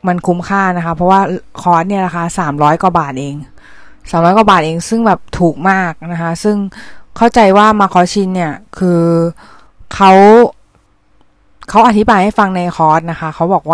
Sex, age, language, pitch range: female, 20-39, Thai, 160-195 Hz